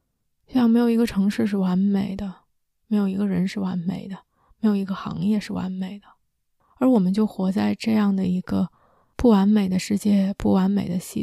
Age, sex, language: 20-39, female, Chinese